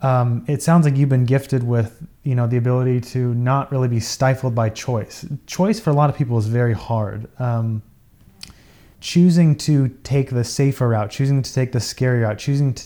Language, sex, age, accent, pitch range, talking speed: English, male, 20-39, American, 115-130 Hz, 200 wpm